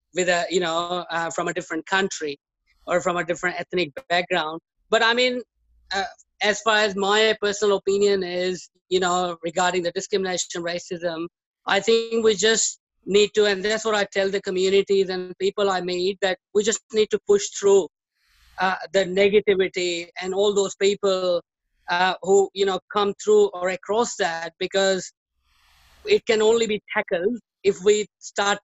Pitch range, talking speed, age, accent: 175-200 Hz, 170 wpm, 20-39, Indian